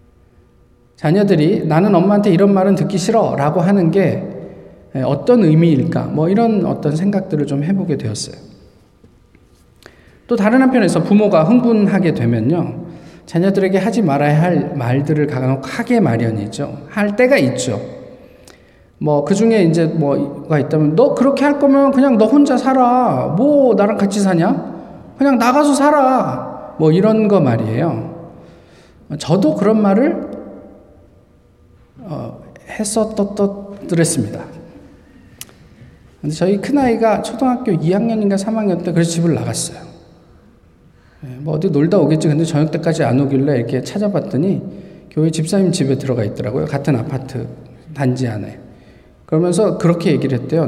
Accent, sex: native, male